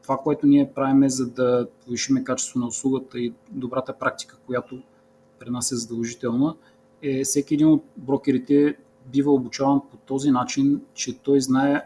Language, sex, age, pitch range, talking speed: Bulgarian, male, 30-49, 125-140 Hz, 155 wpm